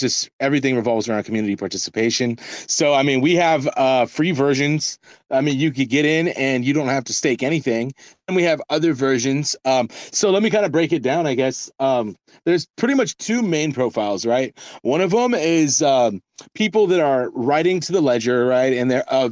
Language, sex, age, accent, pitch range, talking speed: English, male, 30-49, American, 125-155 Hz, 210 wpm